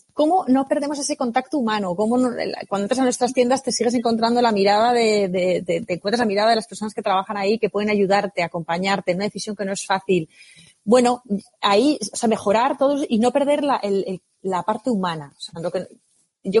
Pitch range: 200-255 Hz